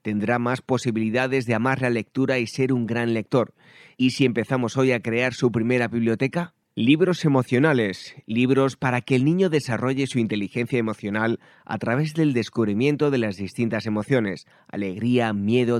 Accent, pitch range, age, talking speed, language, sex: Spanish, 110-135 Hz, 30-49, 160 wpm, Spanish, male